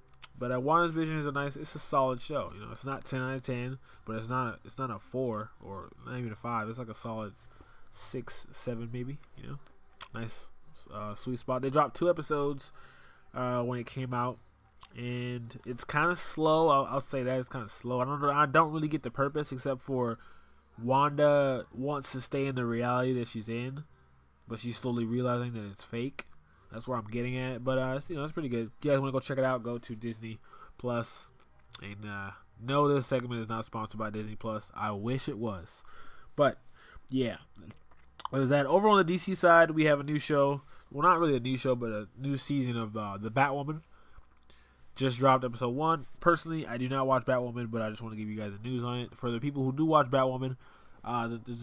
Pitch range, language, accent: 115-140 Hz, English, American